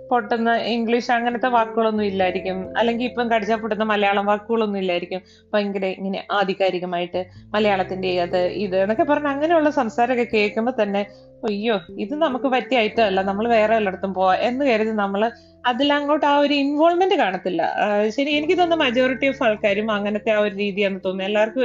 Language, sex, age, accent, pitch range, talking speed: Malayalam, female, 20-39, native, 205-250 Hz, 145 wpm